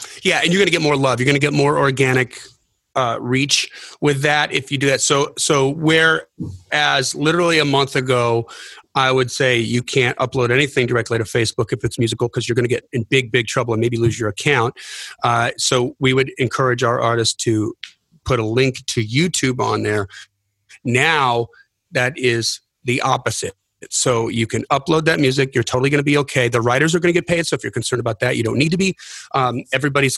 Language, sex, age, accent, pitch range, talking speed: English, male, 30-49, American, 120-145 Hz, 215 wpm